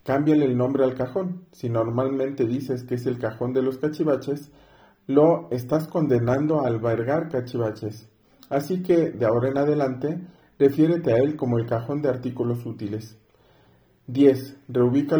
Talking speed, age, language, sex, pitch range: 150 wpm, 40-59, Spanish, male, 120-150 Hz